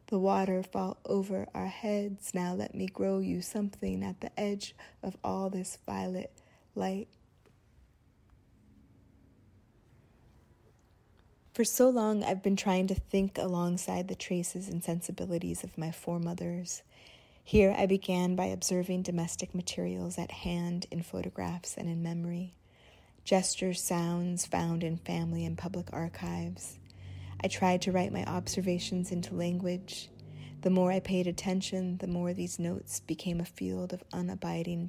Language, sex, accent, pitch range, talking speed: English, female, American, 115-185 Hz, 140 wpm